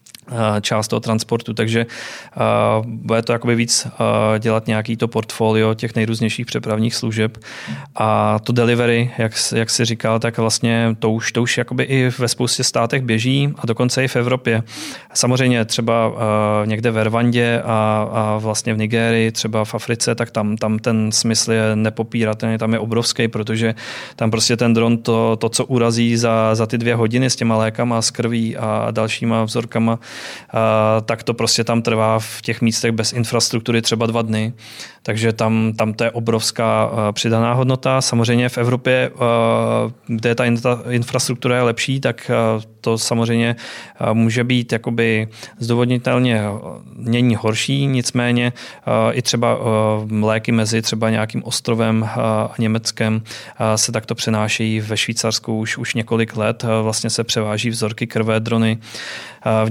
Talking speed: 155 wpm